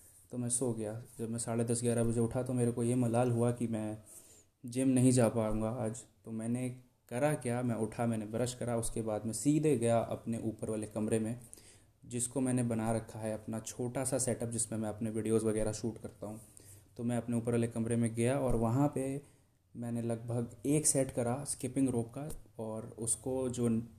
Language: Hindi